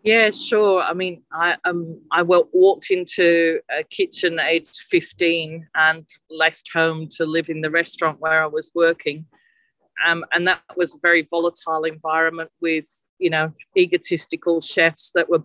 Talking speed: 155 wpm